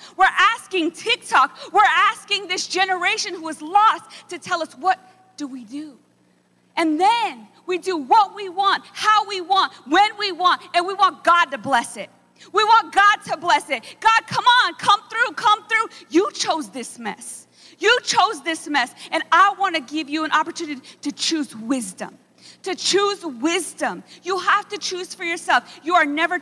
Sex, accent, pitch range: female, American, 305-380 Hz